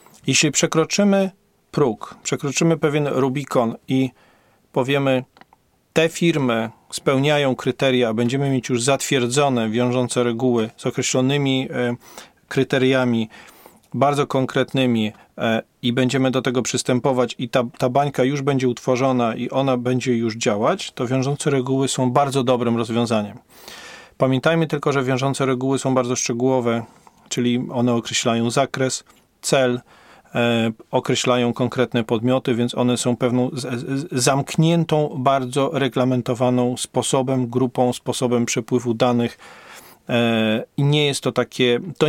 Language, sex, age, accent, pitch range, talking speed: Polish, male, 40-59, native, 120-135 Hz, 115 wpm